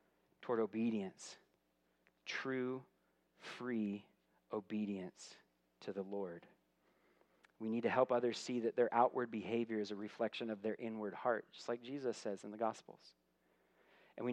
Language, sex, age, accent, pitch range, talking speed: English, male, 40-59, American, 100-130 Hz, 140 wpm